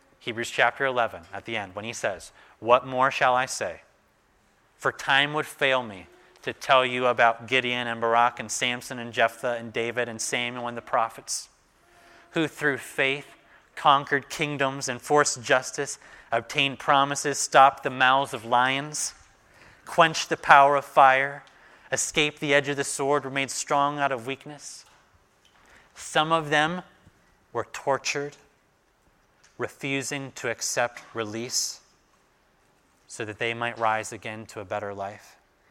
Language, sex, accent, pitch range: English, male, American, 115-140 Hz